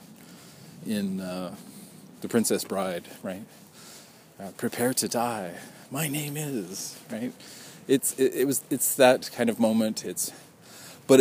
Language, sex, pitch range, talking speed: English, male, 105-145 Hz, 135 wpm